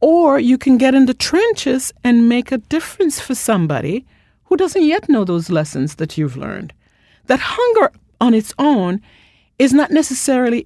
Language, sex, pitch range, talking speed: English, female, 175-255 Hz, 170 wpm